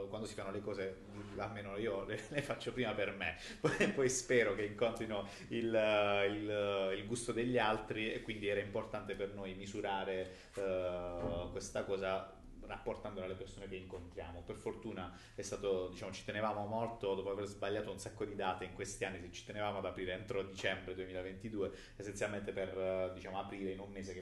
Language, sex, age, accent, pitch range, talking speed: Italian, male, 30-49, native, 90-100 Hz, 185 wpm